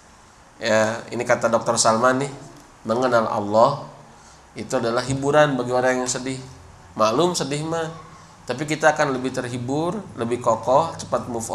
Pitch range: 115-150 Hz